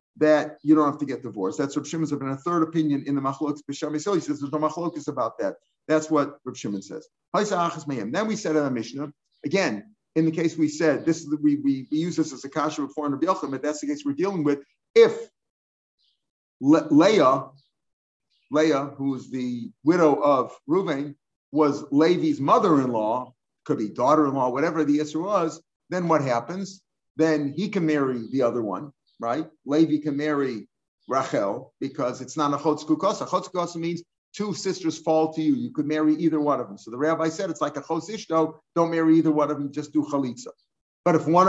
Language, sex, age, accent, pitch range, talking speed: English, male, 50-69, American, 145-165 Hz, 200 wpm